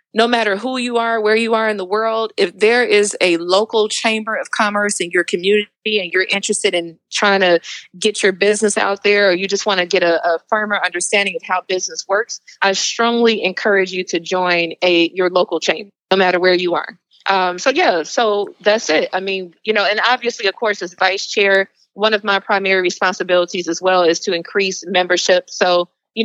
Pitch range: 185-210 Hz